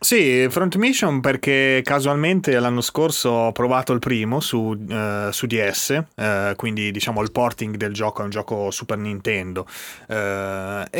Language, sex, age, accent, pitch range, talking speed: Italian, male, 30-49, native, 105-125 Hz, 155 wpm